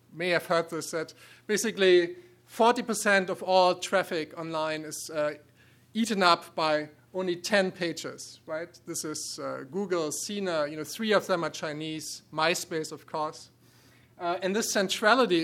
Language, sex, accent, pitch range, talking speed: English, male, German, 150-185 Hz, 150 wpm